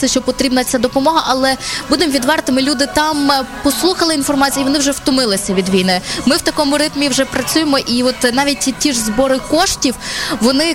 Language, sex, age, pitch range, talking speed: Ukrainian, female, 20-39, 225-270 Hz, 175 wpm